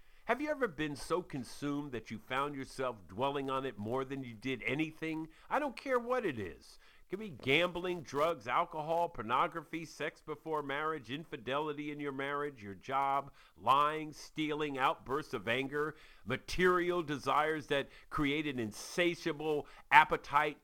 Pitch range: 135-175 Hz